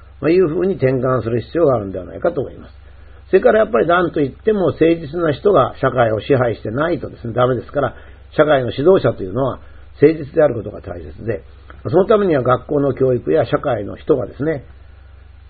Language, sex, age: Japanese, male, 50-69